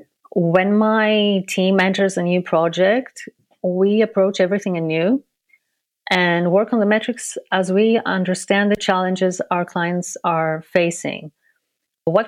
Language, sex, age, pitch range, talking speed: English, female, 30-49, 170-200 Hz, 125 wpm